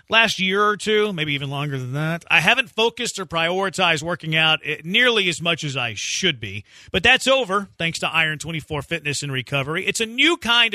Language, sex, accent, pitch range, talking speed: English, male, American, 160-215 Hz, 210 wpm